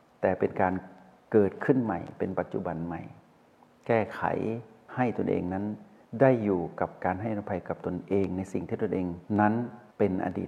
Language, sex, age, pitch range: Thai, male, 60-79, 95-130 Hz